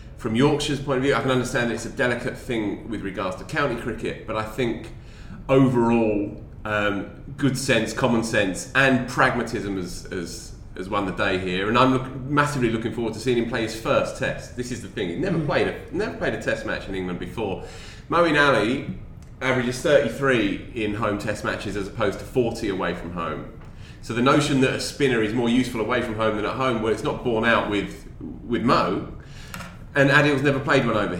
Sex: male